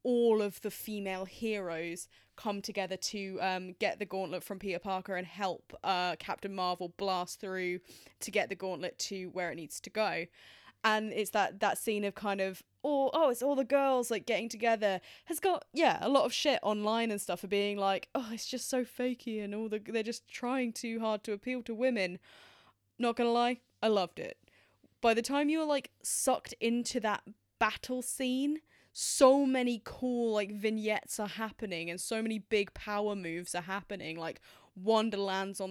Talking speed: 195 wpm